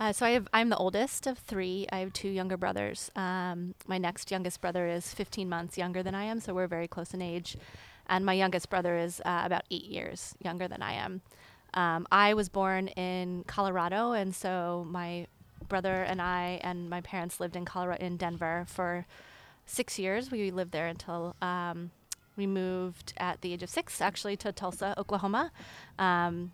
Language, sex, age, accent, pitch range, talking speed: English, female, 20-39, American, 170-190 Hz, 190 wpm